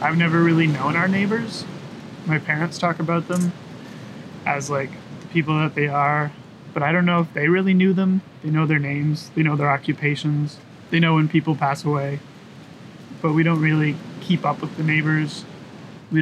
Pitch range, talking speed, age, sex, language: 150-170 Hz, 190 wpm, 20-39, male, English